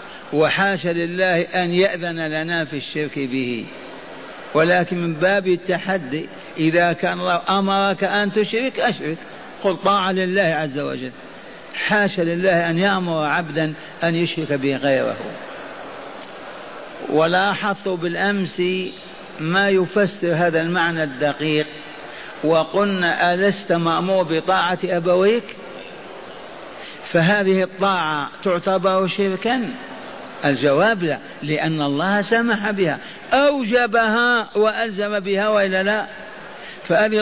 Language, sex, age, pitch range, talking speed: Arabic, male, 50-69, 170-210 Hz, 95 wpm